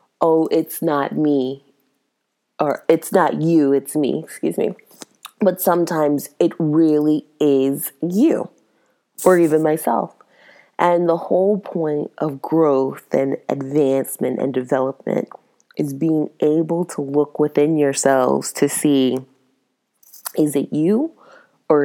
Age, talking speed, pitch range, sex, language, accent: 20-39, 120 wpm, 145-175 Hz, female, English, American